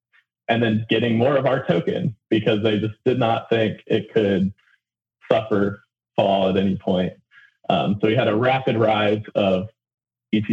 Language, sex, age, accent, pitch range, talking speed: English, male, 20-39, American, 100-120 Hz, 165 wpm